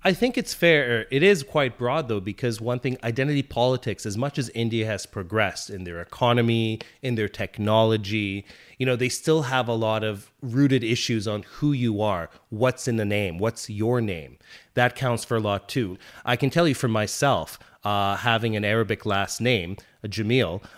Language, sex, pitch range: English, male, 110-135 Hz